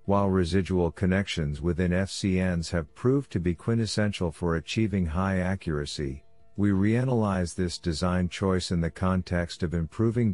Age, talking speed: 50-69, 140 wpm